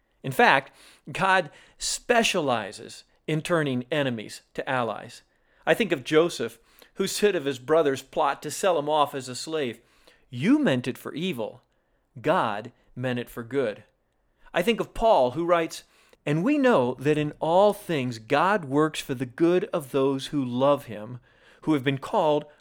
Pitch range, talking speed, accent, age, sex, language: 130-190 Hz, 165 wpm, American, 40-59, male, English